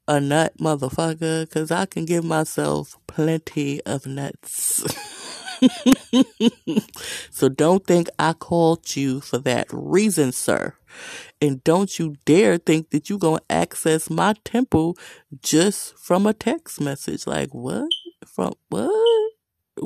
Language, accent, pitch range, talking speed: English, American, 155-245 Hz, 120 wpm